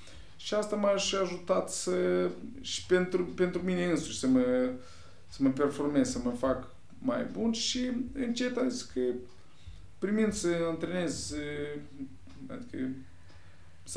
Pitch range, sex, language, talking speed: 110-185 Hz, male, Romanian, 115 wpm